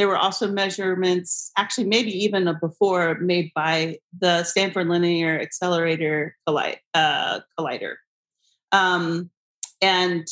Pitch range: 180-240 Hz